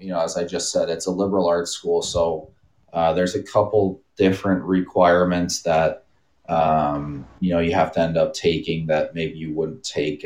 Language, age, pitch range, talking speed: English, 30-49, 75-95 Hz, 195 wpm